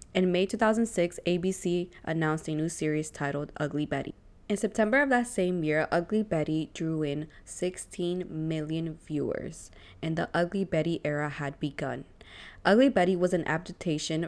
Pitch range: 150-185 Hz